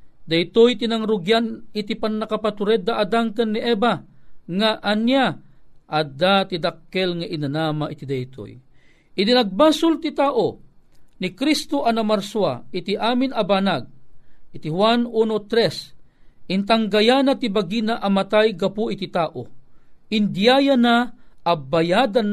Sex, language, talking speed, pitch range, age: male, Filipino, 115 wpm, 150-220 Hz, 40-59